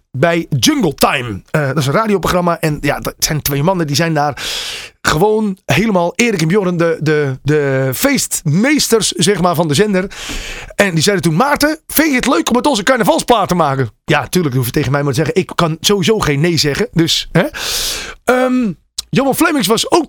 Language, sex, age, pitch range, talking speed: Dutch, male, 30-49, 170-255 Hz, 205 wpm